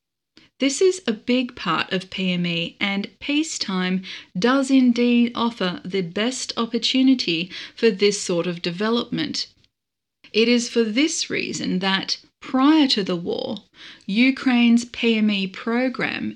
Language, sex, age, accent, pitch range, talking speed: English, female, 30-49, Australian, 195-245 Hz, 120 wpm